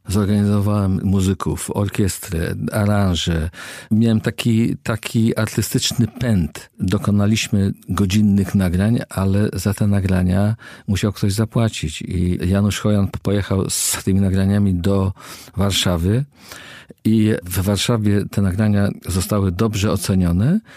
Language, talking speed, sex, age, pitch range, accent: Polish, 105 wpm, male, 50-69, 95-110 Hz, native